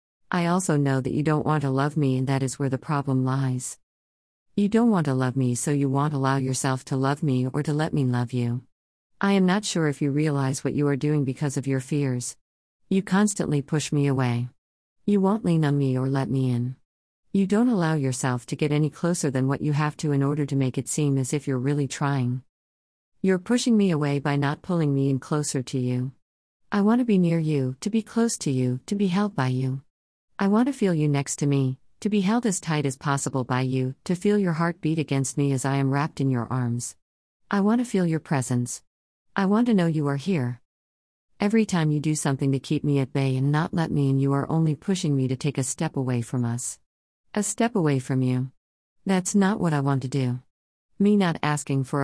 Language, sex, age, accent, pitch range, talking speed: English, female, 50-69, American, 130-165 Hz, 235 wpm